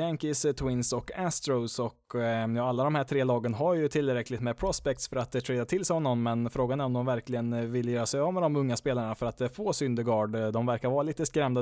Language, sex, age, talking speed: Swedish, male, 20-39, 250 wpm